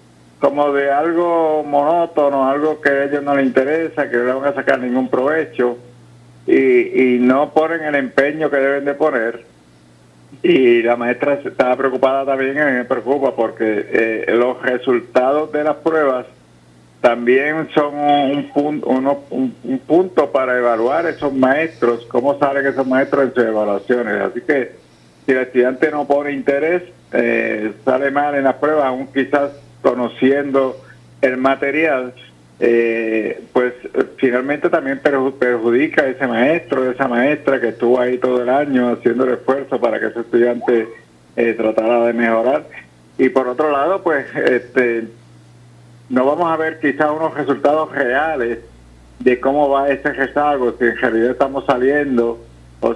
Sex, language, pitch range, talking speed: male, Spanish, 120-145 Hz, 155 wpm